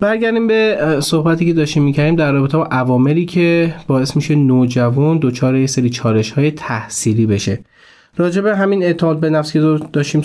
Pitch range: 125-155 Hz